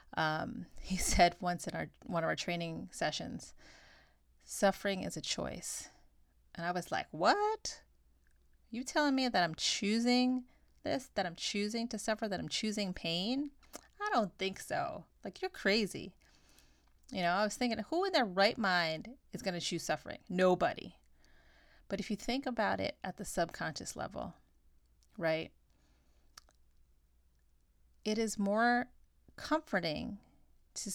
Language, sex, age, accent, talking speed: English, female, 30-49, American, 145 wpm